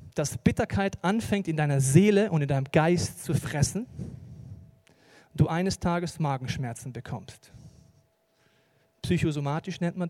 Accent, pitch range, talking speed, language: German, 140-185 Hz, 120 wpm, German